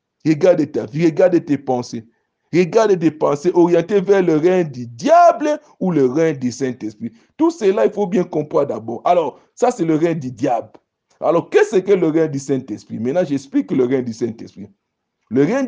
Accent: Nigerian